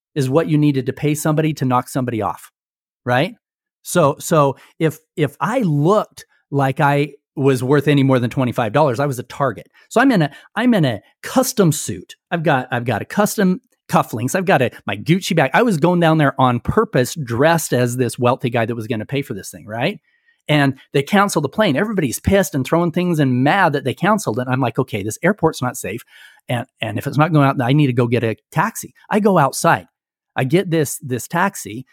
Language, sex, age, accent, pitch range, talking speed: English, male, 30-49, American, 130-175 Hz, 225 wpm